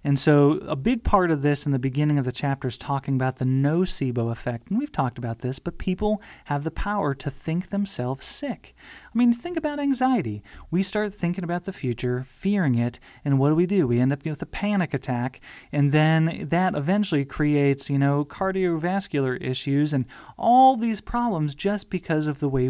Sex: male